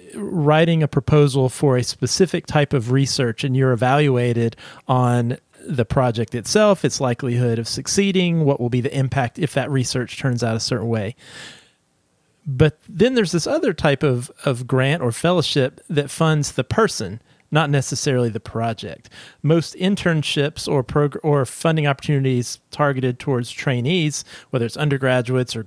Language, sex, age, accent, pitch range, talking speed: English, male, 40-59, American, 125-150 Hz, 155 wpm